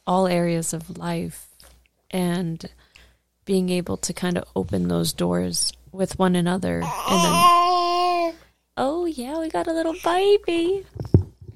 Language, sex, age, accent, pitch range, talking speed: English, female, 20-39, American, 160-190 Hz, 130 wpm